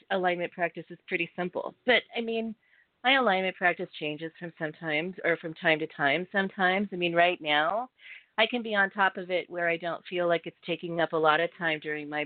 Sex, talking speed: female, 220 wpm